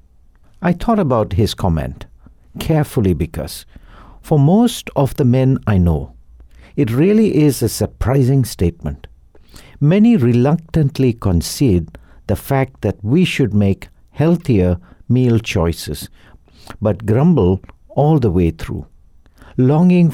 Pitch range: 85-135 Hz